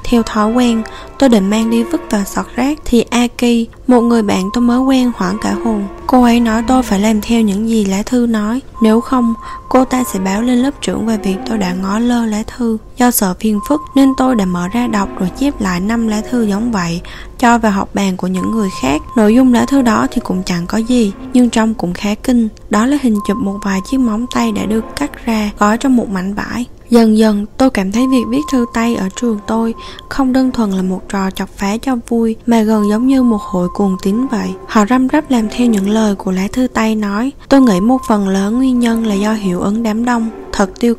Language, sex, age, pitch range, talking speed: Vietnamese, female, 10-29, 200-245 Hz, 245 wpm